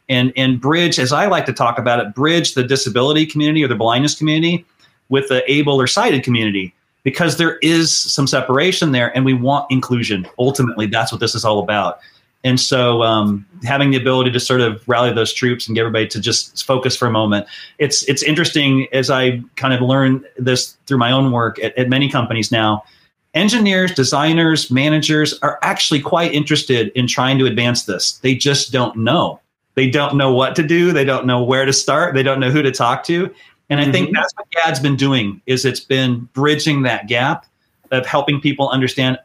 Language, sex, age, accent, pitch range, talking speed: English, male, 40-59, American, 115-140 Hz, 205 wpm